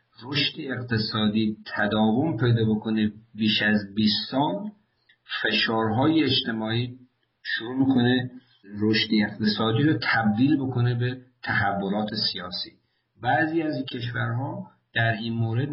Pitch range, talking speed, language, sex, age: 105-125 Hz, 105 wpm, Persian, male, 50-69